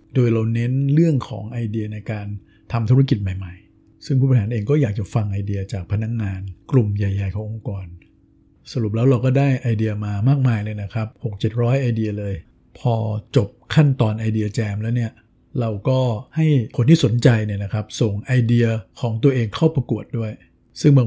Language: Thai